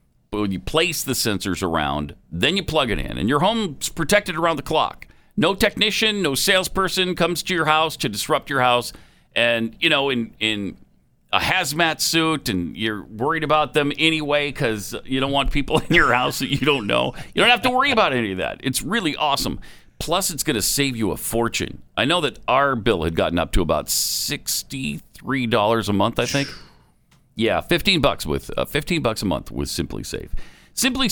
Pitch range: 110-175 Hz